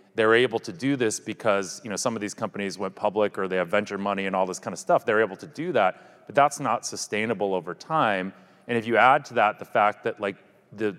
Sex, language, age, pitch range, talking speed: male, English, 30-49, 95-110 Hz, 255 wpm